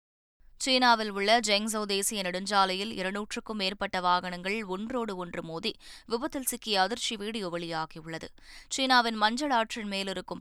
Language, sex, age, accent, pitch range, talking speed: Tamil, female, 20-39, native, 180-220 Hz, 120 wpm